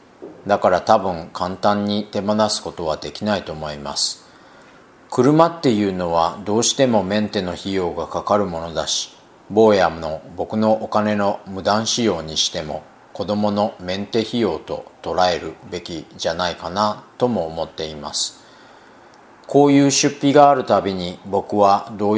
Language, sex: Japanese, male